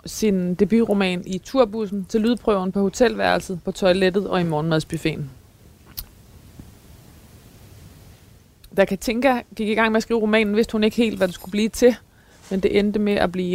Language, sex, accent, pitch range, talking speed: Danish, female, native, 160-205 Hz, 165 wpm